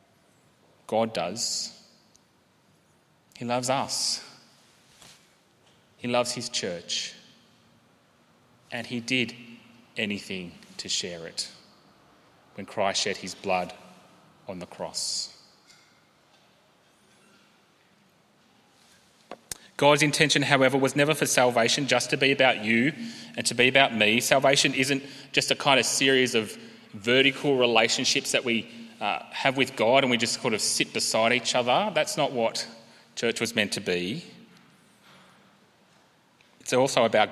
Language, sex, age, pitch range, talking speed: English, male, 30-49, 115-140 Hz, 120 wpm